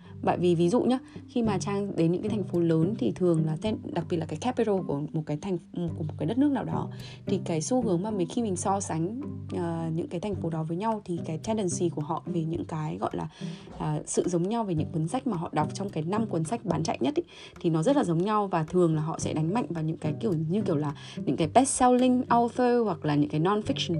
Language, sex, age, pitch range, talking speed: Vietnamese, female, 20-39, 160-215 Hz, 285 wpm